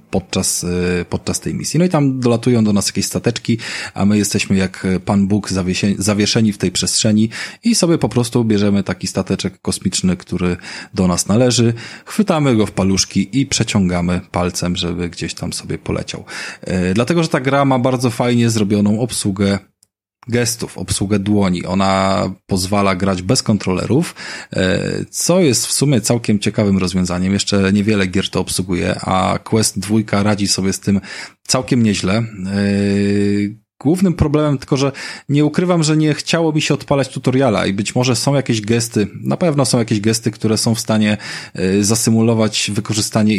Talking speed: 160 wpm